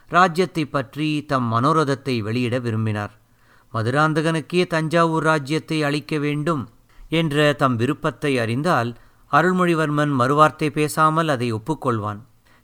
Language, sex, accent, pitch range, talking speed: Tamil, male, native, 125-160 Hz, 95 wpm